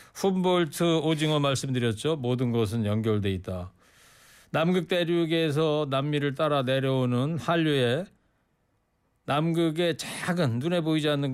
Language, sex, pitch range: Korean, male, 125-170 Hz